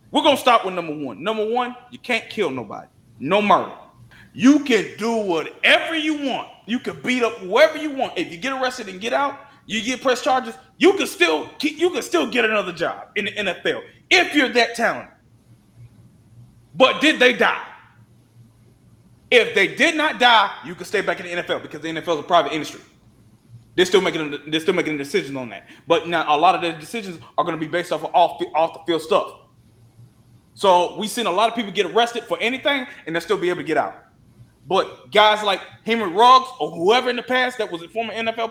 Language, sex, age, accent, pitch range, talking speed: English, male, 20-39, American, 170-270 Hz, 215 wpm